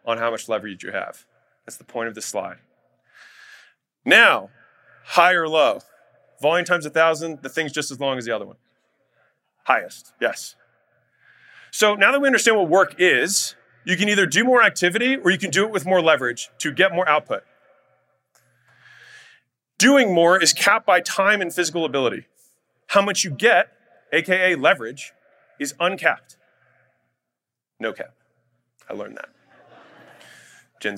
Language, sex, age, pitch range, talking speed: English, male, 30-49, 125-190 Hz, 155 wpm